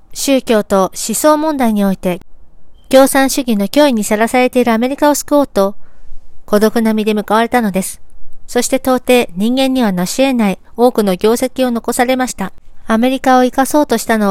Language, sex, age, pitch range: Japanese, female, 40-59, 205-250 Hz